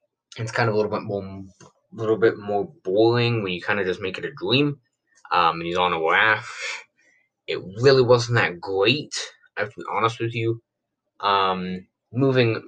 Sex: male